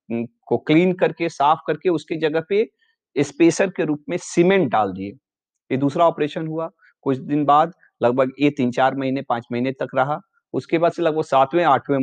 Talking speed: 185 wpm